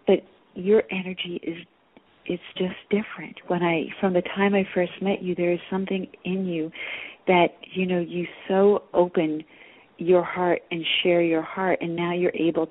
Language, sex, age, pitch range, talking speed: English, female, 40-59, 160-190 Hz, 175 wpm